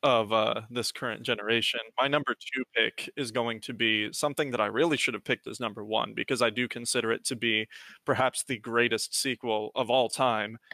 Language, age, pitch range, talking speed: English, 20-39, 115-130 Hz, 205 wpm